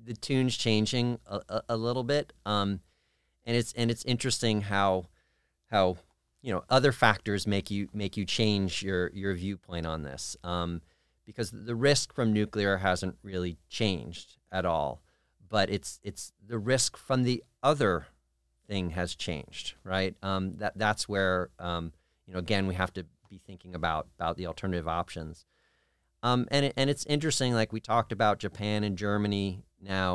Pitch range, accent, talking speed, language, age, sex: 90-105 Hz, American, 170 wpm, English, 40-59, male